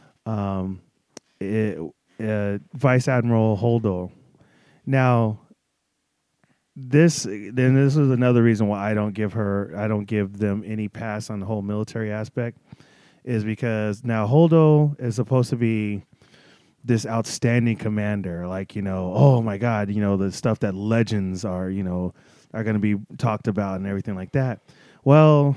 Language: English